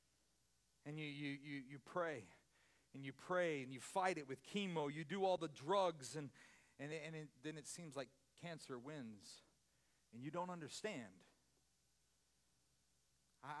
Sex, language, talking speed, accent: male, English, 160 wpm, American